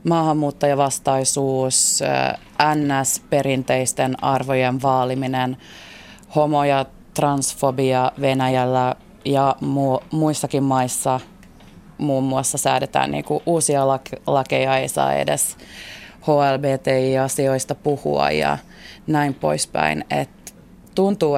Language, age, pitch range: Finnish, 20-39, 130-155 Hz